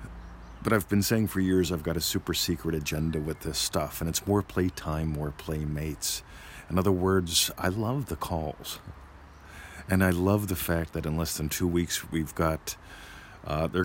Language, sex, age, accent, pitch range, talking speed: English, male, 50-69, American, 75-90 Hz, 190 wpm